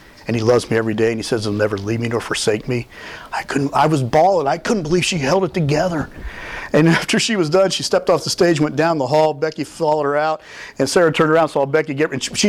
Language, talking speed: English, 270 wpm